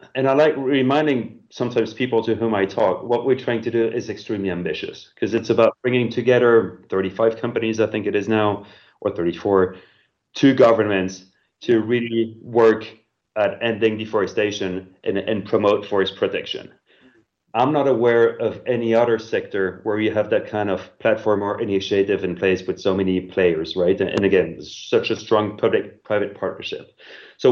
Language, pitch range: English, 100-120 Hz